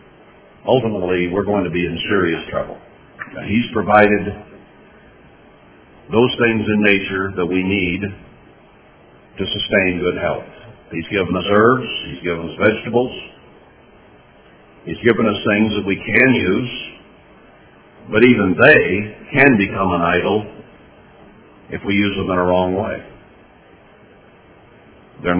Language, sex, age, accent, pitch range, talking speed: English, male, 50-69, American, 95-120 Hz, 125 wpm